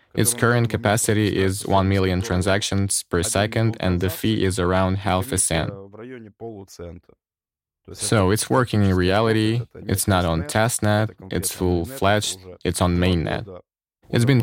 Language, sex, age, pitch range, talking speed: English, male, 20-39, 90-110 Hz, 135 wpm